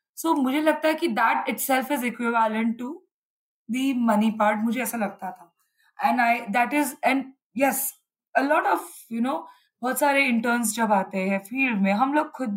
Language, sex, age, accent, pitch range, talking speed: Hindi, female, 20-39, native, 210-270 Hz, 180 wpm